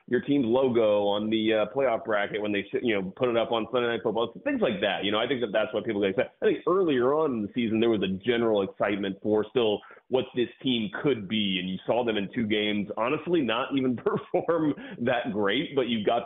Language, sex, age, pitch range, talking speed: English, male, 30-49, 100-125 Hz, 245 wpm